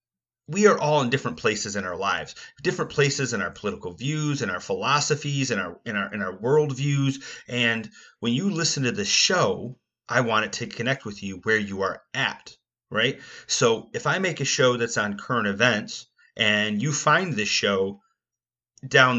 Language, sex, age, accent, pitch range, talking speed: English, male, 30-49, American, 110-150 Hz, 190 wpm